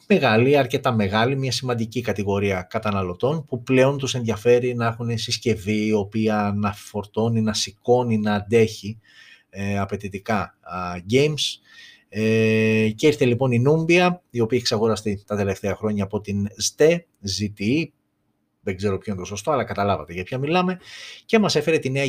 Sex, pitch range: male, 105-130 Hz